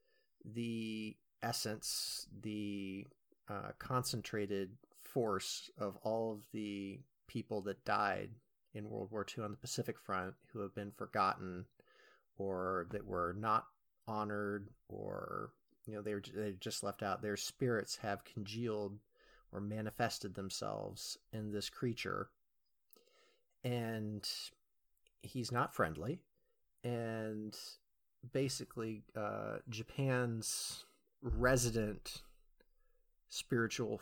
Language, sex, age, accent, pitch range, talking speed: English, male, 30-49, American, 105-120 Hz, 105 wpm